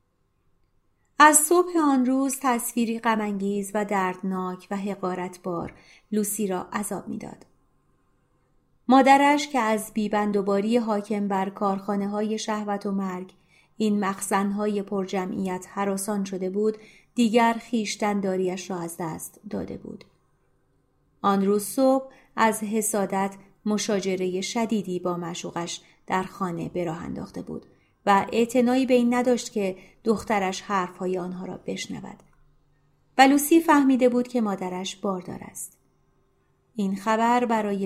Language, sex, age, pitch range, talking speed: Persian, female, 30-49, 185-220 Hz, 115 wpm